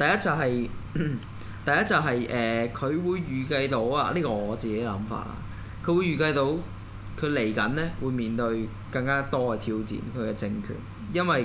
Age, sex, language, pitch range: 20-39, male, Chinese, 110-145 Hz